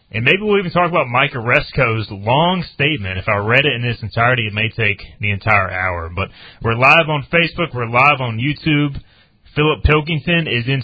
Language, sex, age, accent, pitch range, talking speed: English, male, 30-49, American, 105-135 Hz, 200 wpm